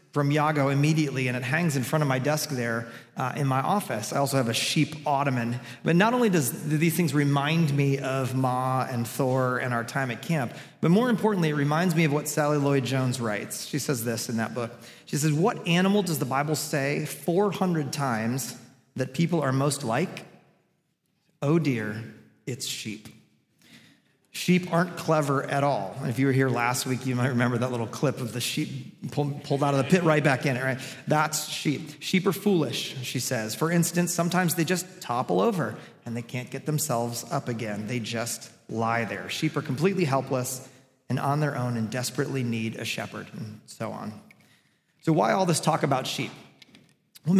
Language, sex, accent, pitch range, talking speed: English, male, American, 125-160 Hz, 195 wpm